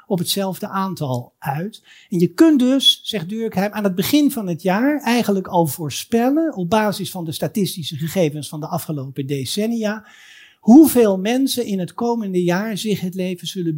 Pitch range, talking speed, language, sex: 170-235 Hz, 170 wpm, Dutch, male